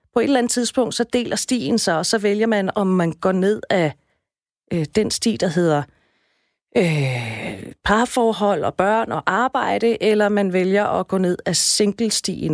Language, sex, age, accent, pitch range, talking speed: Danish, female, 30-49, native, 165-215 Hz, 175 wpm